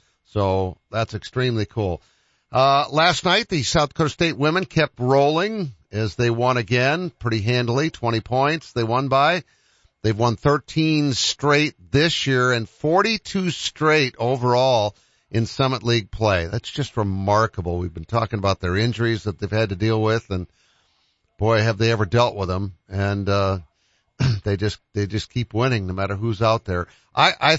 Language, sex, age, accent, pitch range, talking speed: English, male, 50-69, American, 100-135 Hz, 175 wpm